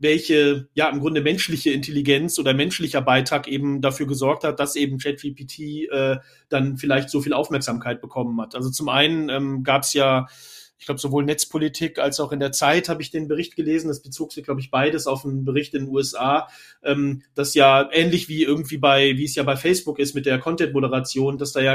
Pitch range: 135-155 Hz